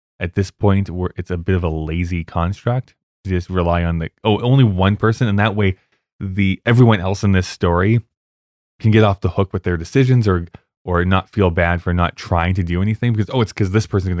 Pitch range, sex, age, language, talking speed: 85-105 Hz, male, 20-39, English, 230 wpm